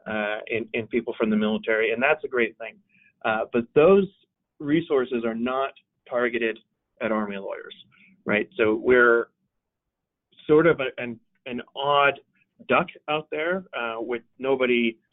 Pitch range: 115-145 Hz